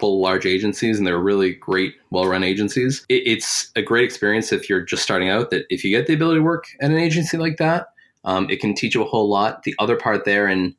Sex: male